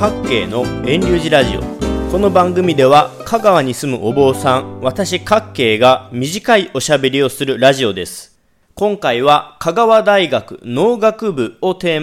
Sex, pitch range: male, 140-210 Hz